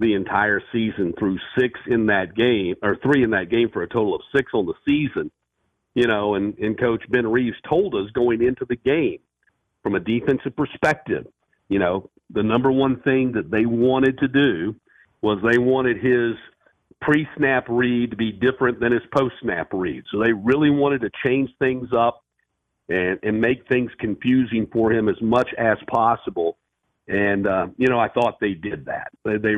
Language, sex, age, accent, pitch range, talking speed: English, male, 50-69, American, 105-130 Hz, 185 wpm